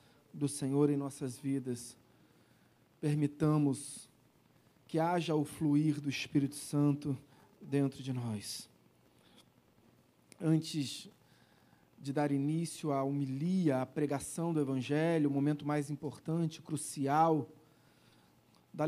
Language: Portuguese